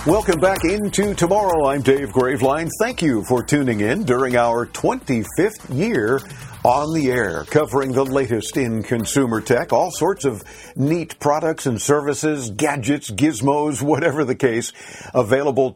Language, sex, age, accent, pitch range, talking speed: English, male, 50-69, American, 125-155 Hz, 145 wpm